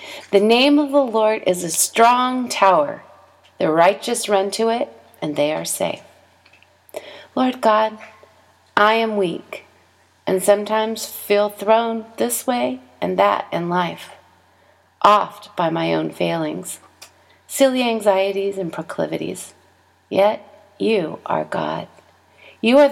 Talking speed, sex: 125 wpm, female